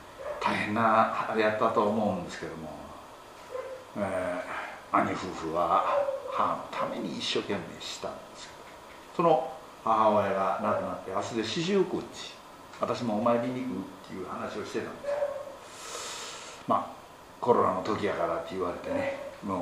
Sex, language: male, Japanese